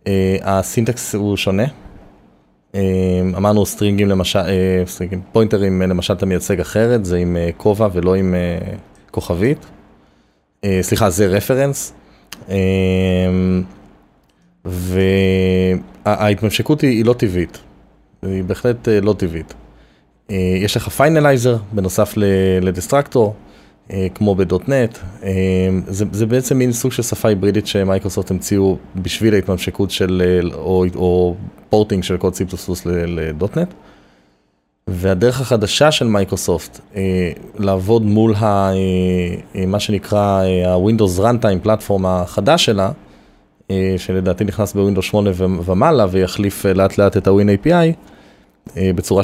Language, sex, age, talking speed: Hebrew, male, 20-39, 115 wpm